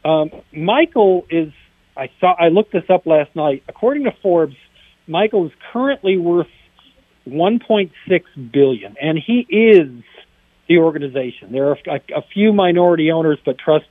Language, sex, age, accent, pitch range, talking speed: English, male, 50-69, American, 150-185 Hz, 140 wpm